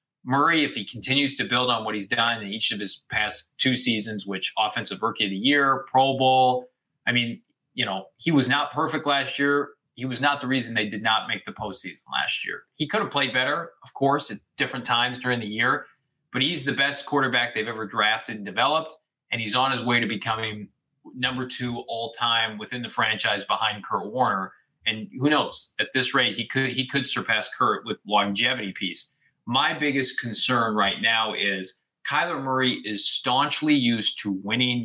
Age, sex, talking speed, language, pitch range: 20-39, male, 200 wpm, English, 115-140 Hz